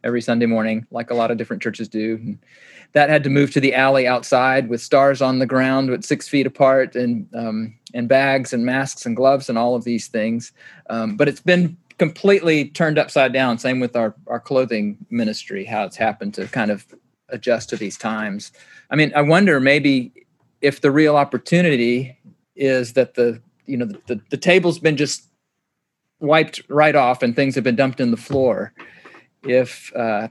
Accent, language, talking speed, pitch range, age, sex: American, English, 195 wpm, 120-145 Hz, 40-59, male